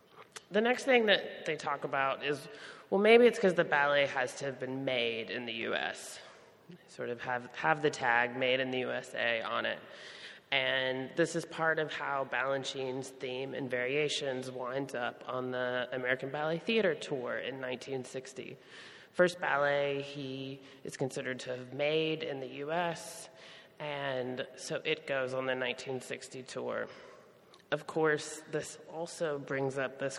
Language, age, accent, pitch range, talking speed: English, 30-49, American, 130-155 Hz, 160 wpm